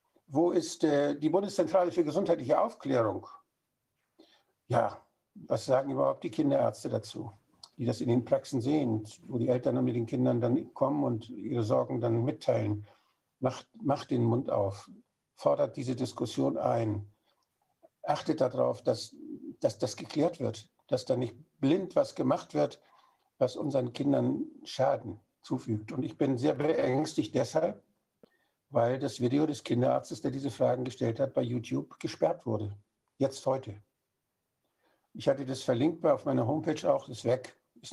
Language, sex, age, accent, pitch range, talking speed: German, male, 60-79, German, 115-145 Hz, 150 wpm